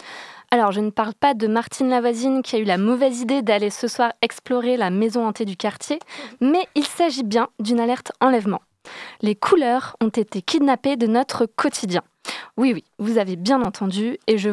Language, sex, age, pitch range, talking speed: French, female, 20-39, 210-270 Hz, 190 wpm